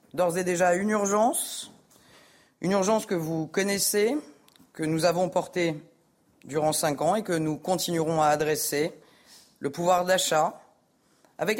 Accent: French